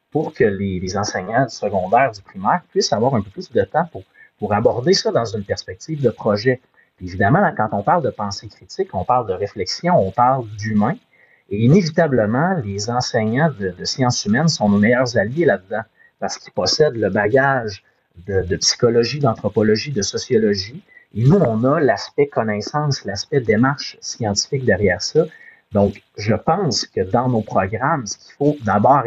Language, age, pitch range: French, 30-49, 105-140 Hz